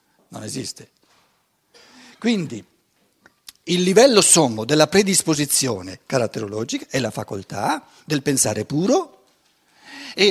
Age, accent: 60-79, native